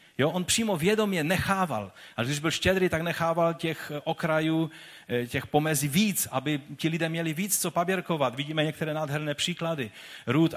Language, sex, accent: Czech, male, native